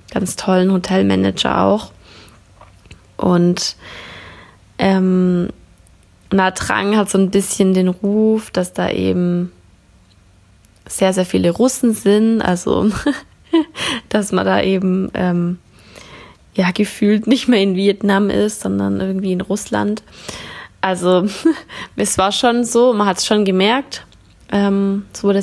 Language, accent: German, German